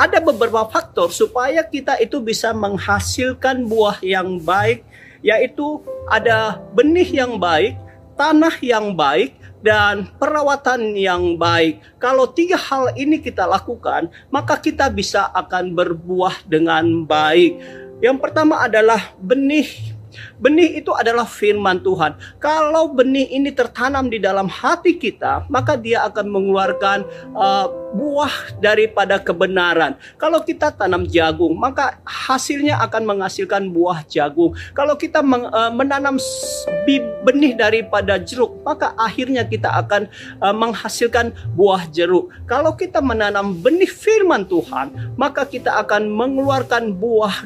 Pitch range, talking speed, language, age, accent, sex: 190-285 Hz, 120 wpm, Indonesian, 40-59, native, male